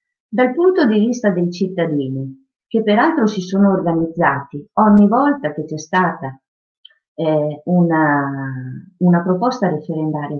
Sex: female